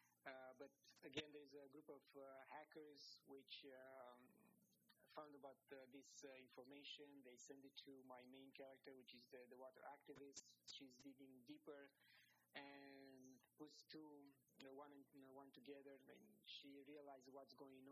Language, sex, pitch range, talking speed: English, male, 125-140 Hz, 165 wpm